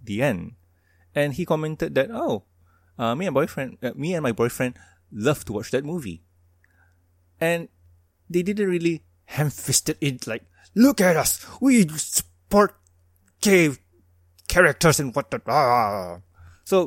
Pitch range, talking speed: 90-150 Hz, 140 wpm